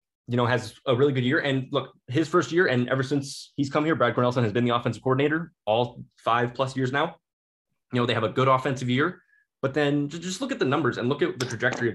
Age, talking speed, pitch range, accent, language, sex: 20-39, 255 wpm, 115-145 Hz, American, English, male